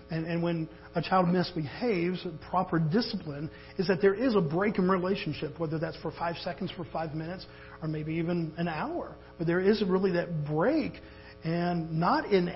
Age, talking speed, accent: 50-69, 180 wpm, American